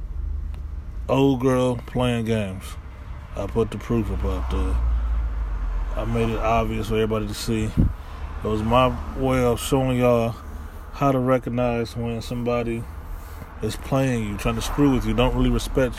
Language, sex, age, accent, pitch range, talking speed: English, male, 20-39, American, 75-115 Hz, 160 wpm